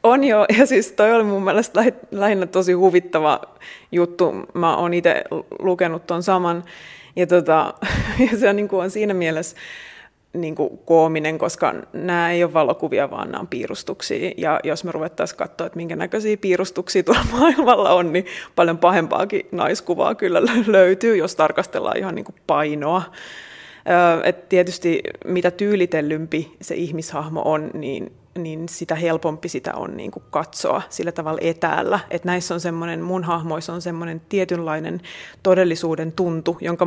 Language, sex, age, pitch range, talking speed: Finnish, female, 20-39, 165-190 Hz, 140 wpm